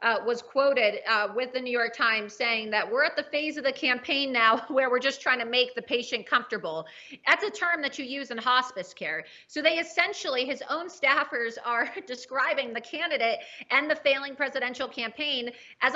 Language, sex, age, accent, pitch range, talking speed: English, female, 30-49, American, 230-275 Hz, 200 wpm